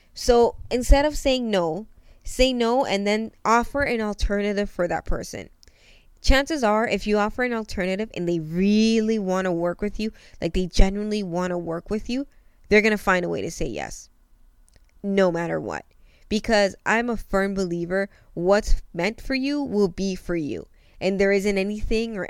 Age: 20-39